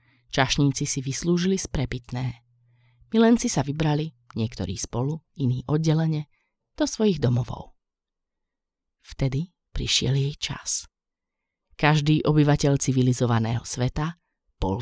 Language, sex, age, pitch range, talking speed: Slovak, female, 30-49, 125-170 Hz, 95 wpm